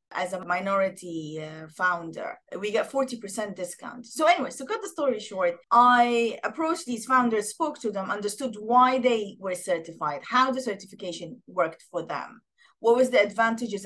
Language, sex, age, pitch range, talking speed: English, female, 30-49, 200-265 Hz, 170 wpm